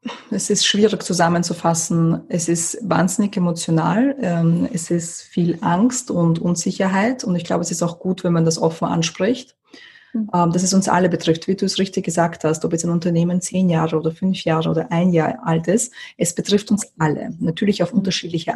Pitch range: 165-195 Hz